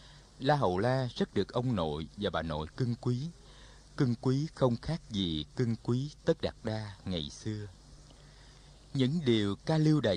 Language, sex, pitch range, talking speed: Vietnamese, male, 100-130 Hz, 170 wpm